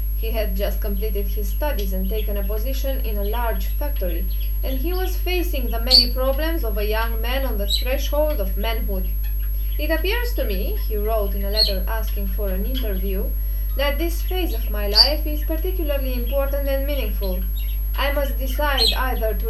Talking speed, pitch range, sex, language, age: 180 wpm, 200-275 Hz, female, English, 20-39